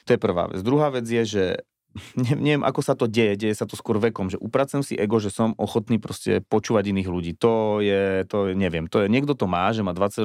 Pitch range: 95-115 Hz